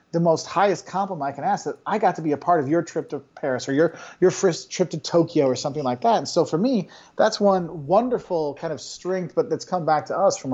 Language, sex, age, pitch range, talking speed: English, male, 40-59, 145-185 Hz, 270 wpm